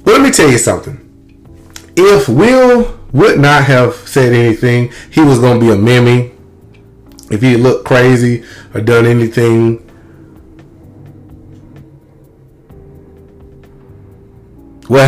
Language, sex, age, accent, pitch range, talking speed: English, male, 30-49, American, 105-170 Hz, 105 wpm